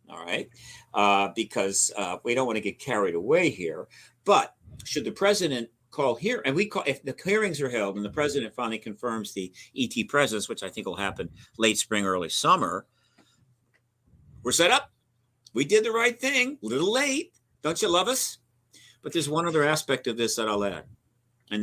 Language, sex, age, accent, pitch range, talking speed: Swedish, male, 50-69, American, 115-150 Hz, 195 wpm